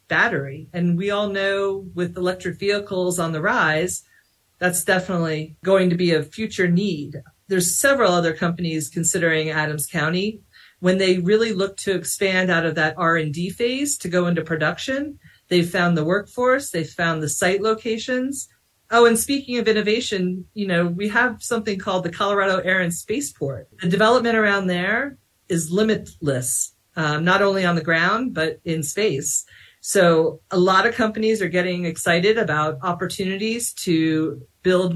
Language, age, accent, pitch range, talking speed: English, 40-59, American, 170-205 Hz, 160 wpm